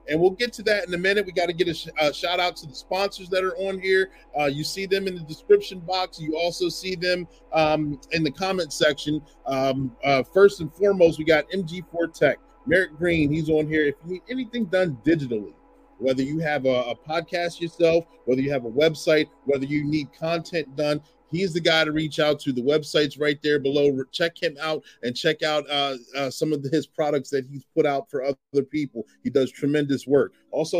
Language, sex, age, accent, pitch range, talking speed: English, male, 30-49, American, 145-175 Hz, 220 wpm